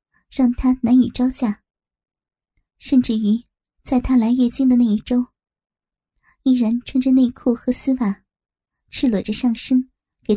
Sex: male